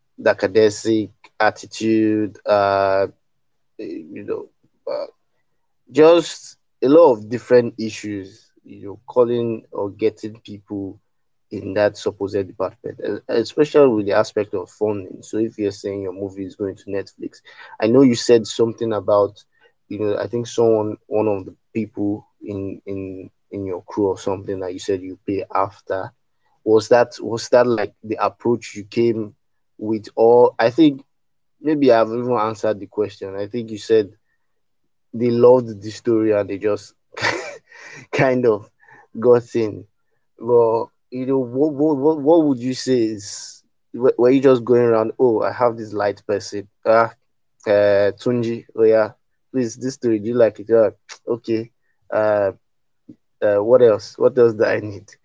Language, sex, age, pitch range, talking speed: English, male, 30-49, 105-130 Hz, 160 wpm